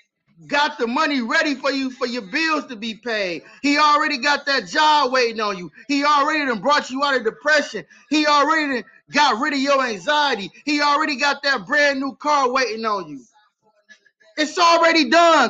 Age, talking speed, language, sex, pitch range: 20-39, 185 wpm, English, male, 235-295 Hz